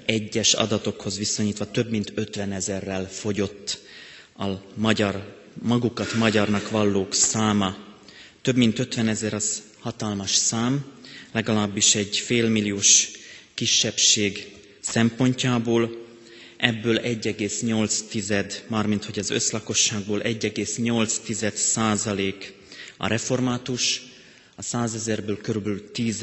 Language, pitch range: Hungarian, 105-115 Hz